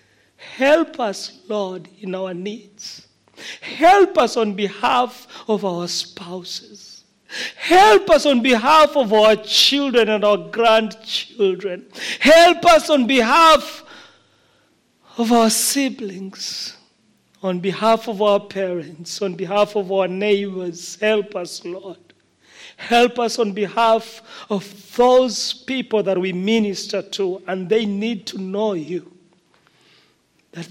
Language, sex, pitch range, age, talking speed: English, male, 175-225 Hz, 40-59, 120 wpm